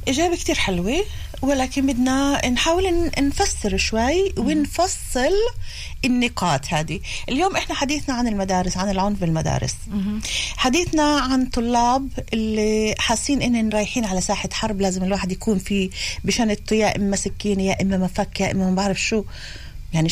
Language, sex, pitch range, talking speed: Hebrew, female, 195-260 Hz, 140 wpm